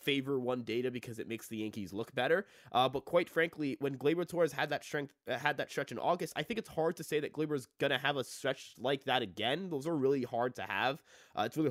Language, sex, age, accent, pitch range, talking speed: English, male, 20-39, American, 120-170 Hz, 265 wpm